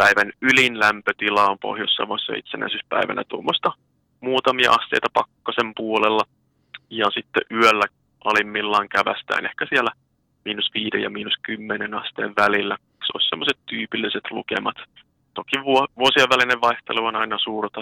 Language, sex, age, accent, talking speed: Finnish, male, 30-49, native, 125 wpm